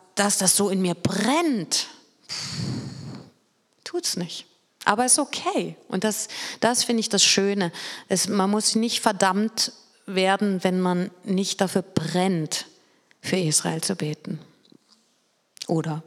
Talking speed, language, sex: 135 wpm, German, female